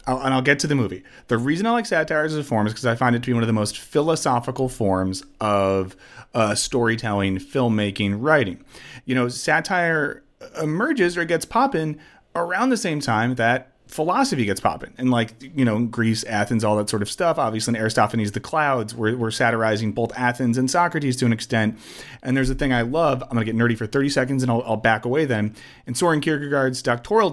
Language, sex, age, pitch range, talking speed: English, male, 30-49, 115-150 Hz, 215 wpm